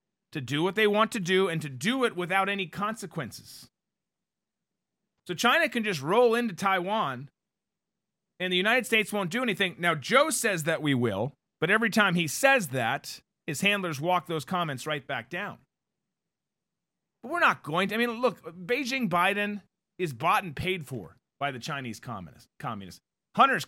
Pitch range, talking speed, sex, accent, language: 155-205 Hz, 175 wpm, male, American, English